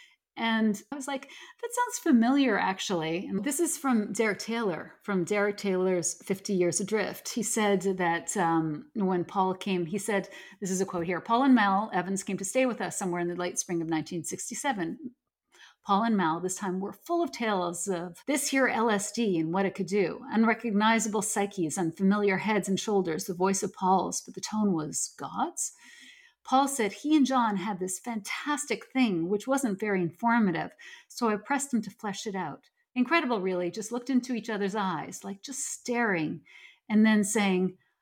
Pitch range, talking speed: 190-255 Hz, 185 wpm